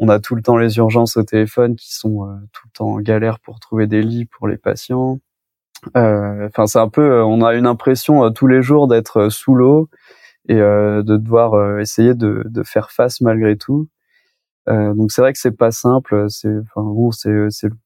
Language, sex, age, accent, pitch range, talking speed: French, male, 20-39, French, 110-125 Hz, 220 wpm